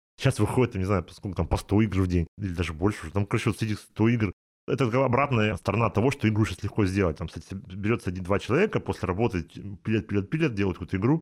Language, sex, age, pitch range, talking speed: Russian, male, 30-49, 90-125 Hz, 215 wpm